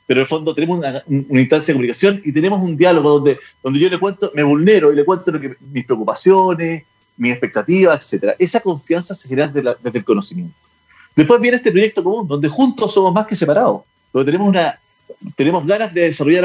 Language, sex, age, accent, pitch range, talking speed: Spanish, male, 40-59, Argentinian, 135-190 Hz, 210 wpm